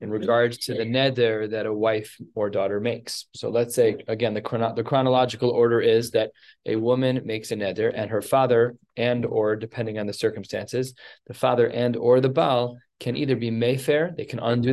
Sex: male